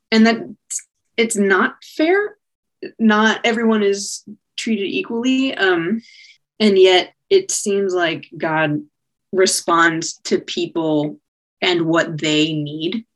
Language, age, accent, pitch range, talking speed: English, 20-39, American, 155-210 Hz, 110 wpm